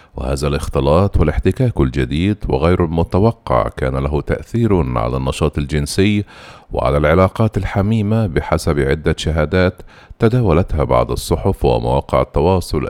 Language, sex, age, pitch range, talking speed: Arabic, male, 50-69, 75-100 Hz, 105 wpm